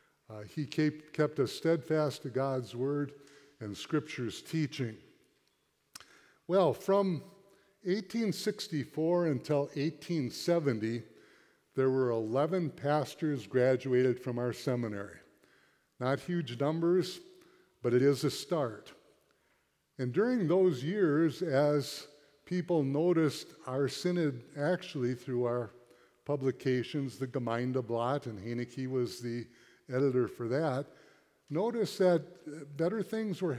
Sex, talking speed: male, 105 wpm